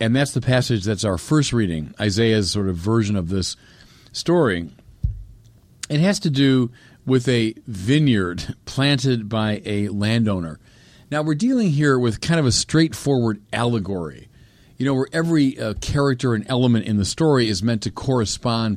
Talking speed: 165 wpm